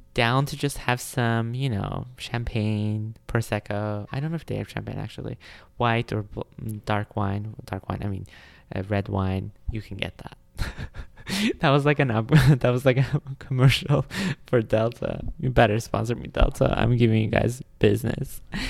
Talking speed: 170 wpm